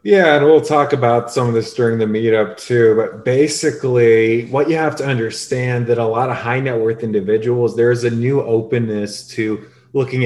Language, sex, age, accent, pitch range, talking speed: English, male, 20-39, American, 105-120 Hz, 195 wpm